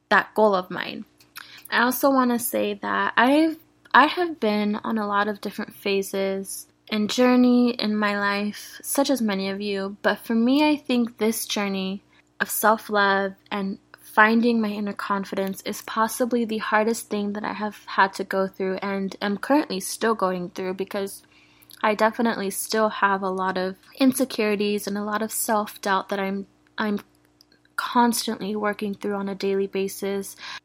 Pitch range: 195-230 Hz